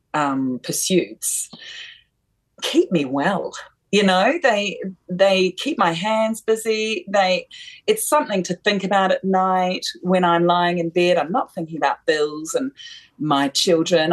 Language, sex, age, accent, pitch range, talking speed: English, female, 40-59, Australian, 155-205 Hz, 145 wpm